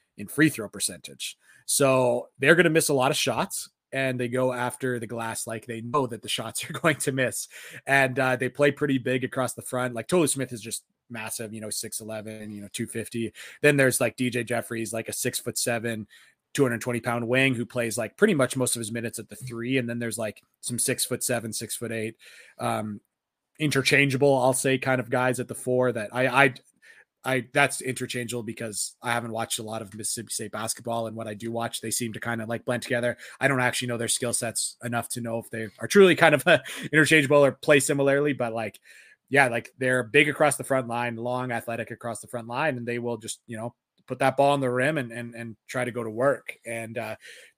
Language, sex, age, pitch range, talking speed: English, male, 20-39, 115-135 Hz, 235 wpm